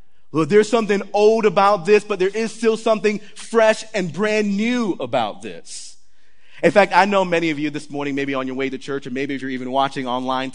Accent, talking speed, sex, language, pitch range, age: American, 220 wpm, male, English, 135-185 Hz, 30-49